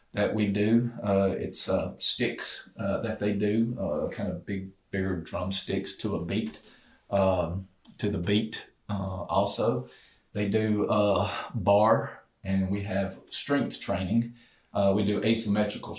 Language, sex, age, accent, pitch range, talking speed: English, male, 40-59, American, 95-105 Hz, 145 wpm